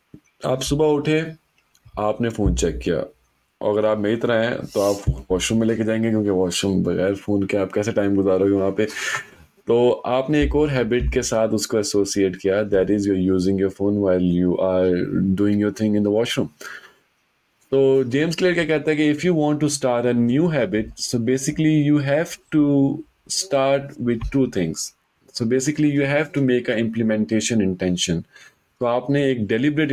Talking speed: 160 wpm